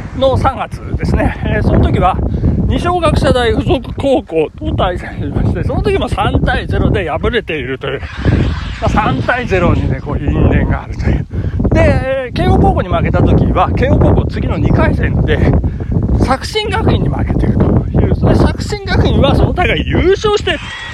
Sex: male